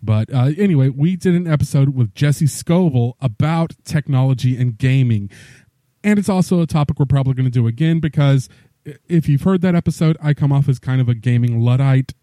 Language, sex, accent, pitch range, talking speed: English, male, American, 120-150 Hz, 195 wpm